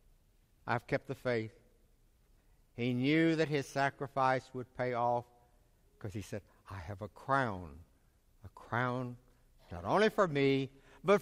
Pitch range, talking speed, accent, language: 120-200 Hz, 140 wpm, American, English